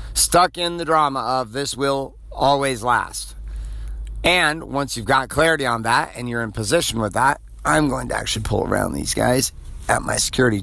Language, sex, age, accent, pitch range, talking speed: English, male, 50-69, American, 95-140 Hz, 185 wpm